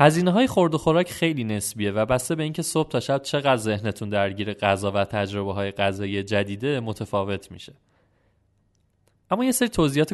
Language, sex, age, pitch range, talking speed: Persian, male, 20-39, 105-155 Hz, 165 wpm